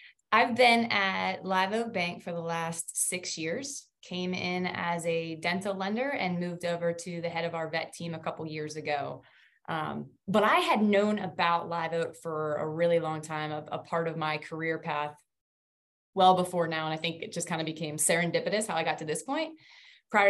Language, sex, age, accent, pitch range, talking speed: English, female, 20-39, American, 165-200 Hz, 205 wpm